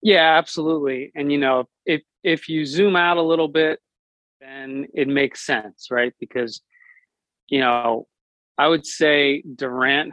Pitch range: 120-150 Hz